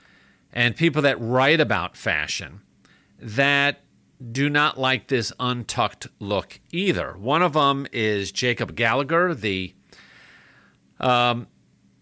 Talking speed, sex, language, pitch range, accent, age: 110 wpm, male, English, 110-155 Hz, American, 50-69